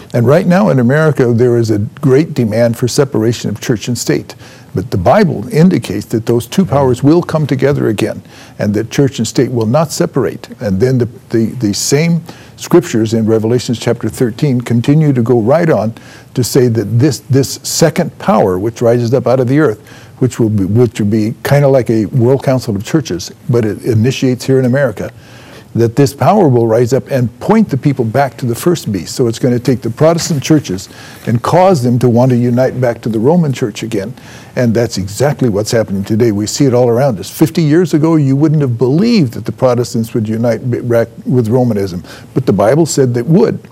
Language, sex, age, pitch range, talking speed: English, male, 60-79, 115-140 Hz, 210 wpm